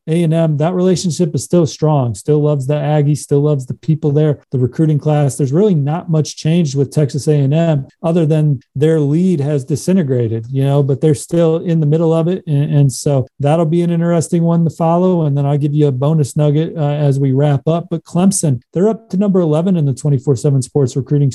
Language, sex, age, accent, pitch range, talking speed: English, male, 40-59, American, 140-155 Hz, 215 wpm